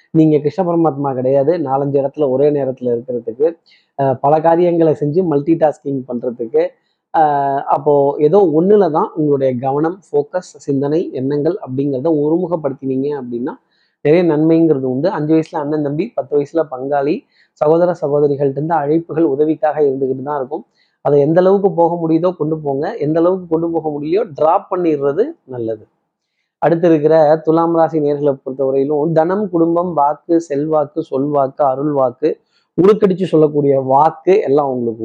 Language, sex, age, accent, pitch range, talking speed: Tamil, male, 20-39, native, 140-165 Hz, 130 wpm